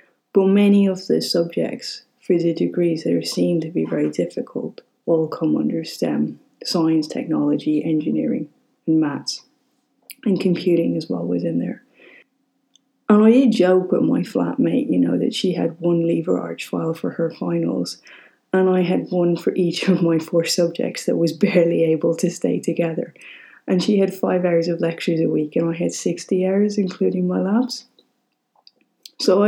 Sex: female